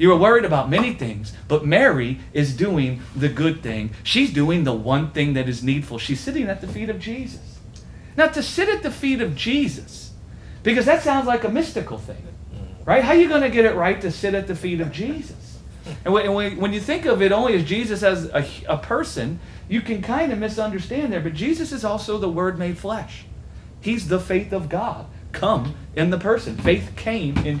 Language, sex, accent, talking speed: English, male, American, 210 wpm